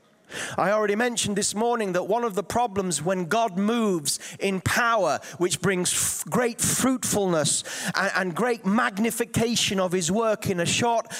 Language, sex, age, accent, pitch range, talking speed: English, male, 30-49, British, 175-225 Hz, 155 wpm